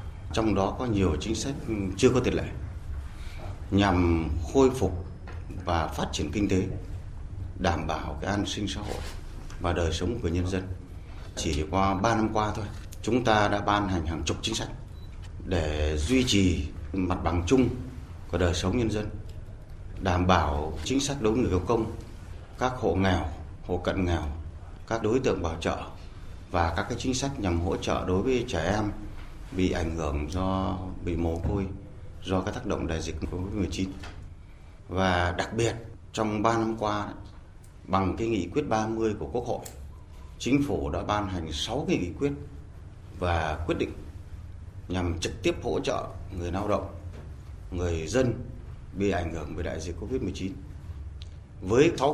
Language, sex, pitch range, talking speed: Vietnamese, male, 85-105 Hz, 170 wpm